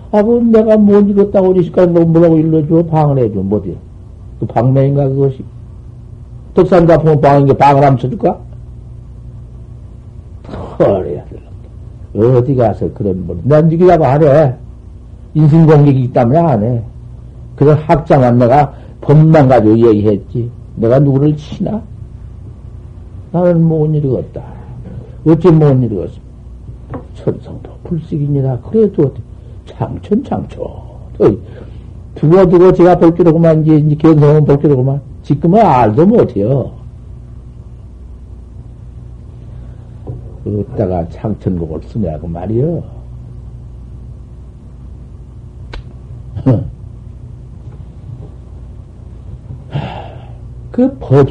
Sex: male